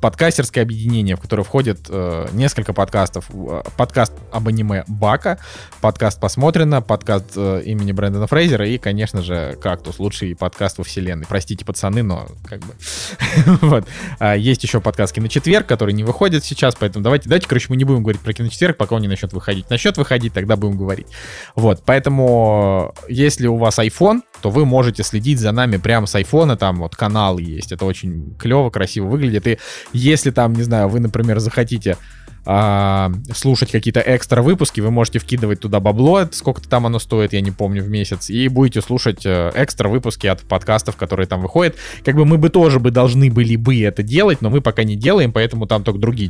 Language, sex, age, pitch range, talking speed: Russian, male, 20-39, 100-125 Hz, 185 wpm